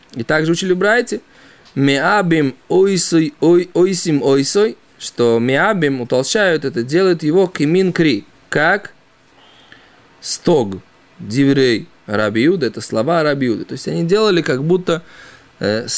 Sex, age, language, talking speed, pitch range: male, 20-39, Russian, 125 wpm, 130-185 Hz